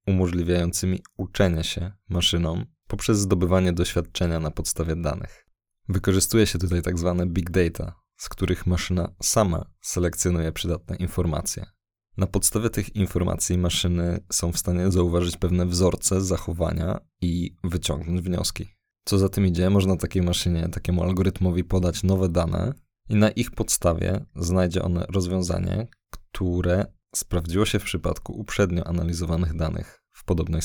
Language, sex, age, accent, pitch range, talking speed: Polish, male, 20-39, native, 85-95 Hz, 130 wpm